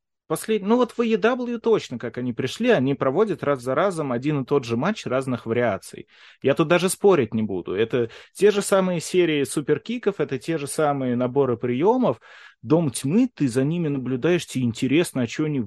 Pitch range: 120-160 Hz